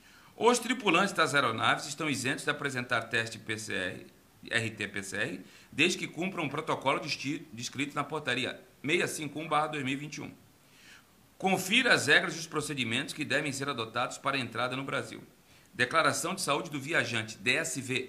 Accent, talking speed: Brazilian, 140 wpm